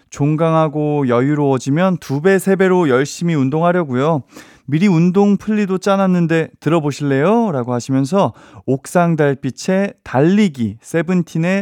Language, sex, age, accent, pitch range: Korean, male, 20-39, native, 125-180 Hz